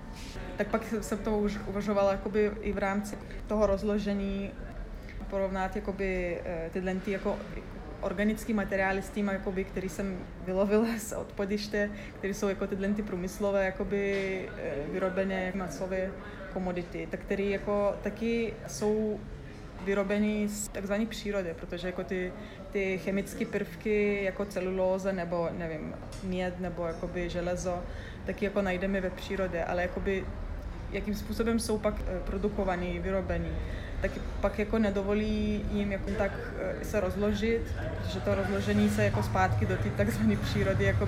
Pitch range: 180-205 Hz